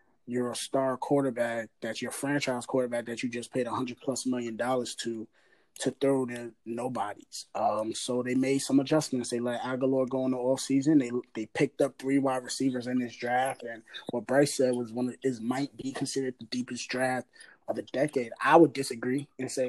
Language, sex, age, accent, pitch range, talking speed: English, male, 20-39, American, 120-145 Hz, 205 wpm